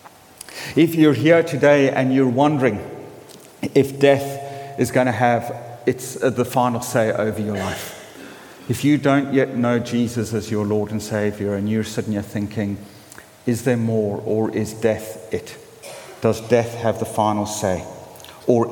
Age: 50-69